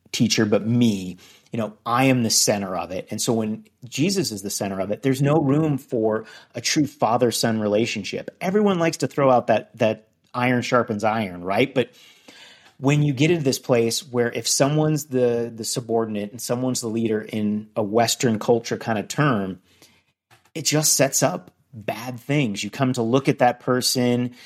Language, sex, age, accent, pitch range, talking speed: English, male, 30-49, American, 105-130 Hz, 190 wpm